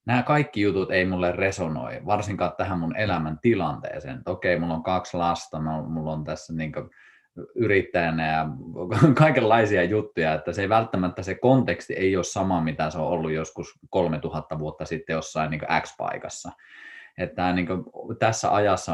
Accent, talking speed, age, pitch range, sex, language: native, 155 wpm, 20-39, 80-105 Hz, male, Finnish